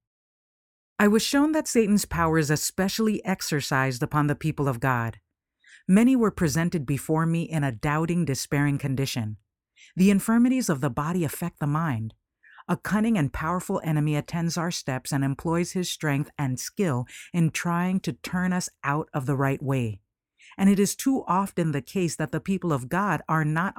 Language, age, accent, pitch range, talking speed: English, 50-69, American, 140-185 Hz, 175 wpm